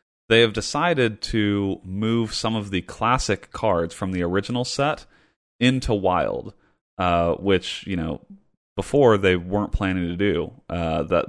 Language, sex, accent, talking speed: English, male, American, 150 wpm